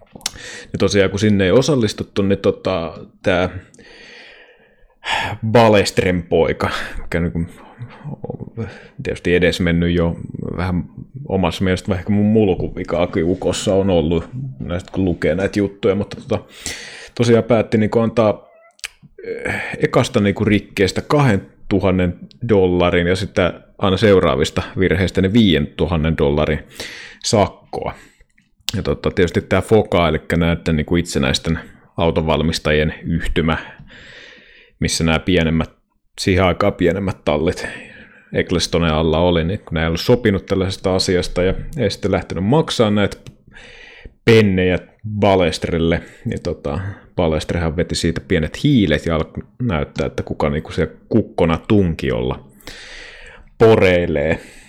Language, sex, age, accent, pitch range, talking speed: Finnish, male, 30-49, native, 85-105 Hz, 115 wpm